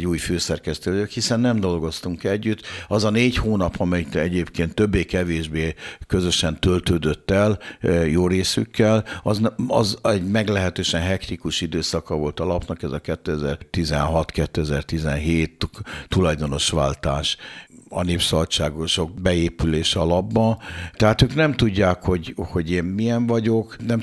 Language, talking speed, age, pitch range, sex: Hungarian, 115 wpm, 60-79, 80-100 Hz, male